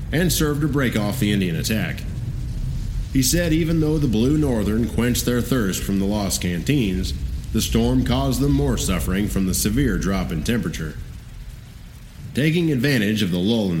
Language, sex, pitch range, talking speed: English, male, 105-130 Hz, 175 wpm